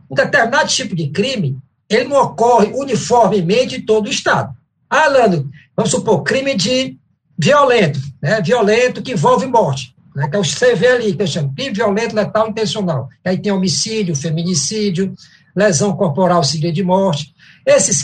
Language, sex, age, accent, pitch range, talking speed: English, male, 60-79, Brazilian, 170-255 Hz, 160 wpm